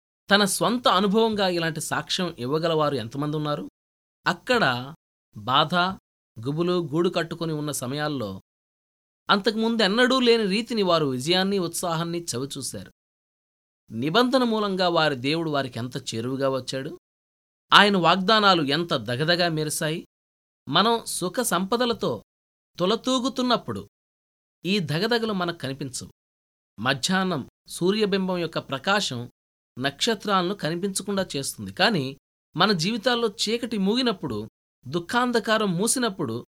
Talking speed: 95 wpm